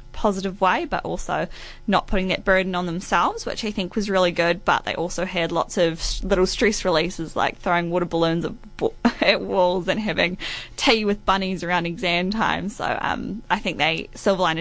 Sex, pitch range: female, 175-220 Hz